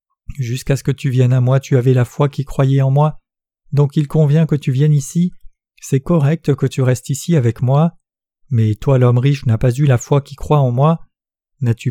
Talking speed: 220 wpm